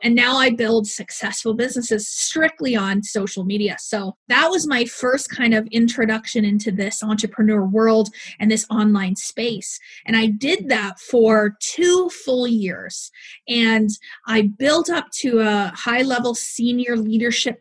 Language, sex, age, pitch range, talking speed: English, female, 30-49, 220-275 Hz, 150 wpm